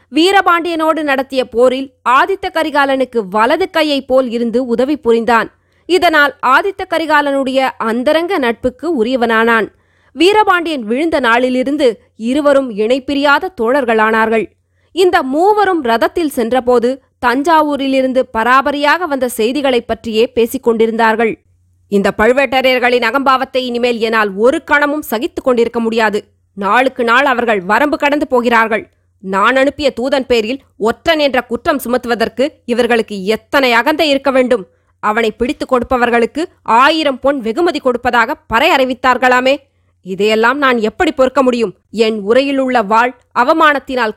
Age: 20-39